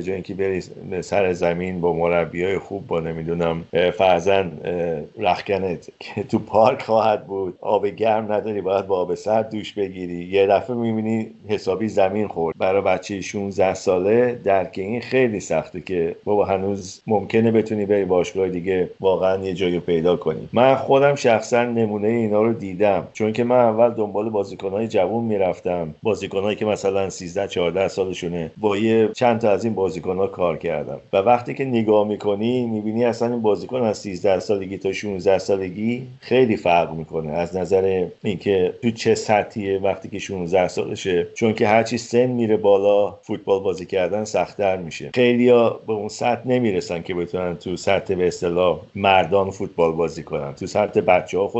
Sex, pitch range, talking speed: male, 90-110 Hz, 165 wpm